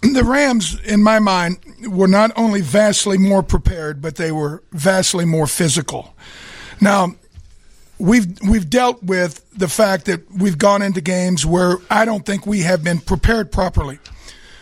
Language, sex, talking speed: English, male, 155 wpm